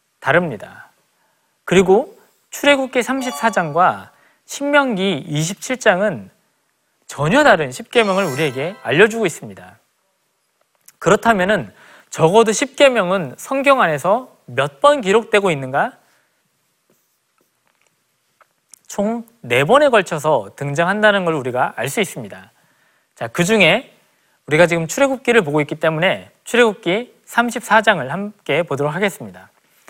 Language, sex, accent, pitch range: Korean, male, native, 165-235 Hz